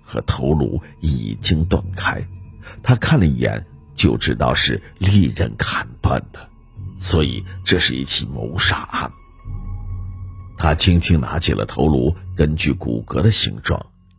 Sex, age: male, 50-69